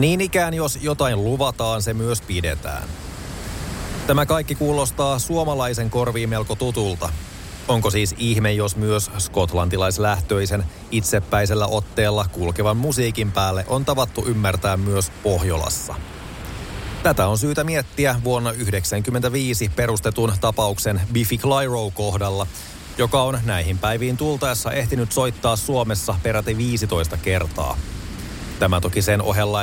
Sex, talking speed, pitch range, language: male, 115 wpm, 95-120 Hz, Finnish